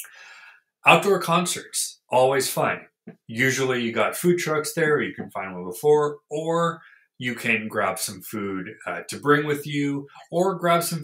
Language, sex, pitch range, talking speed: English, male, 110-150 Hz, 165 wpm